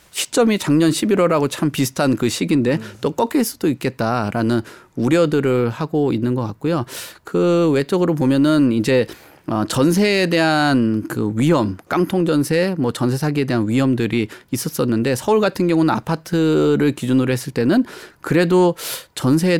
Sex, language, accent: male, Korean, native